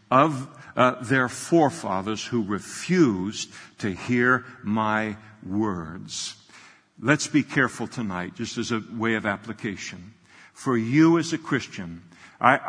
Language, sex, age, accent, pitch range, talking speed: English, male, 60-79, American, 115-145 Hz, 125 wpm